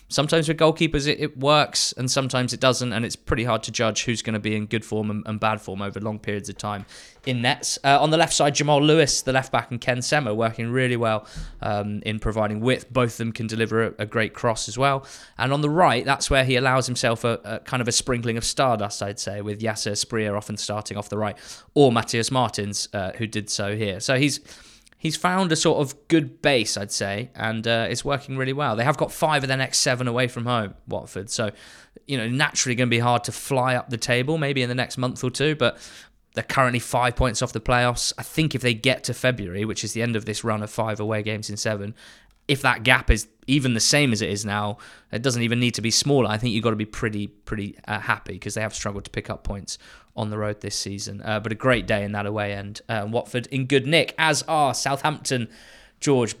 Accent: British